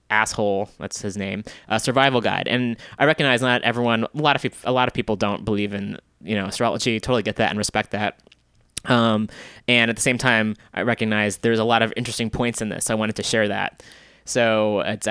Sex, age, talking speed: male, 20-39, 225 wpm